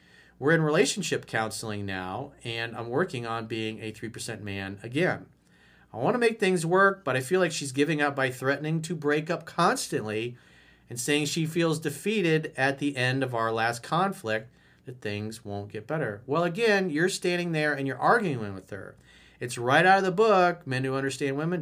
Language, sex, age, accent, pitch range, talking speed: English, male, 40-59, American, 110-180 Hz, 195 wpm